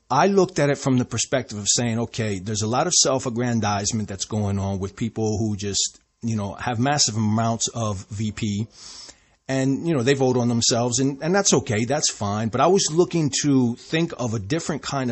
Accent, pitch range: American, 115-140 Hz